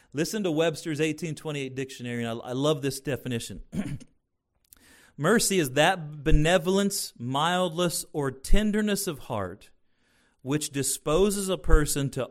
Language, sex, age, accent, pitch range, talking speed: English, male, 40-59, American, 115-175 Hz, 120 wpm